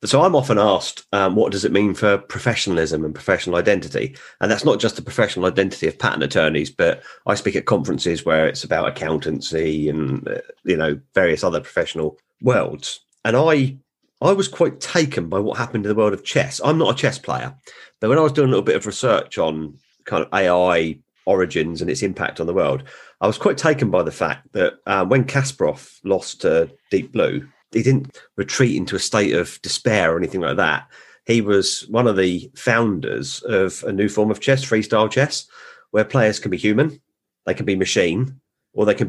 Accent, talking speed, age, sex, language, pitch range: British, 205 wpm, 40-59, male, English, 95-135 Hz